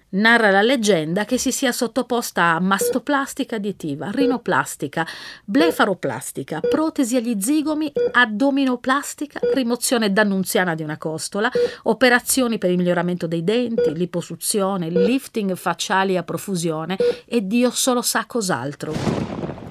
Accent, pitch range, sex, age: native, 170-245 Hz, female, 40-59